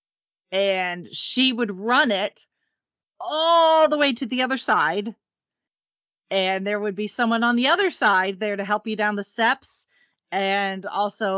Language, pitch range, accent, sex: English, 165-230 Hz, American, female